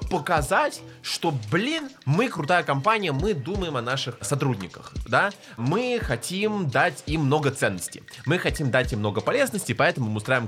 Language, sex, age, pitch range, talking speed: Russian, male, 20-39, 110-145 Hz, 160 wpm